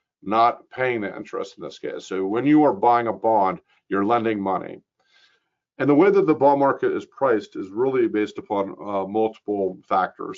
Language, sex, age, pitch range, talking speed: English, male, 50-69, 100-120 Hz, 190 wpm